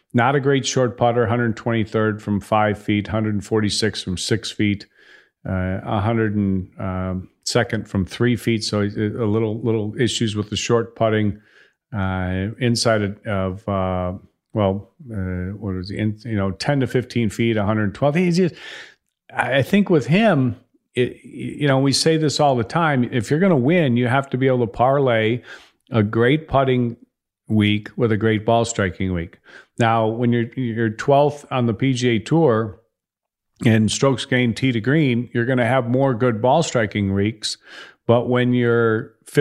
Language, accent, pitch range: English, American, 105-125 Hz